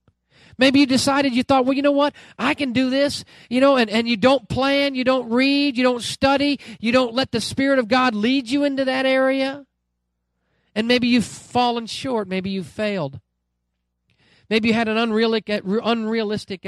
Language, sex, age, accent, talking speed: English, male, 40-59, American, 185 wpm